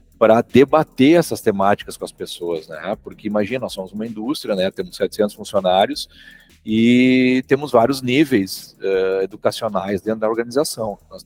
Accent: Brazilian